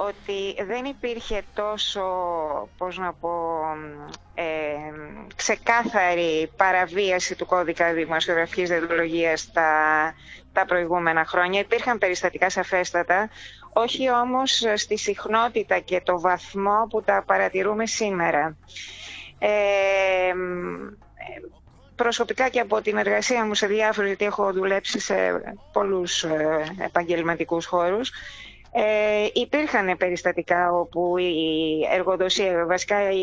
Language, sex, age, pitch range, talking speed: Greek, female, 30-49, 170-215 Hz, 95 wpm